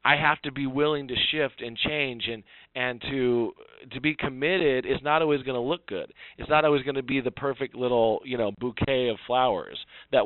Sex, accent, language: male, American, English